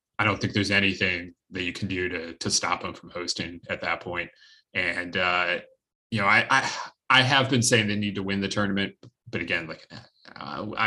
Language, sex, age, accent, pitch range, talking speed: English, male, 30-49, American, 100-125 Hz, 215 wpm